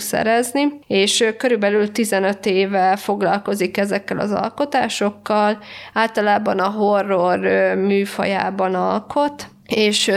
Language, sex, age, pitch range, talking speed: Hungarian, female, 20-39, 190-215 Hz, 90 wpm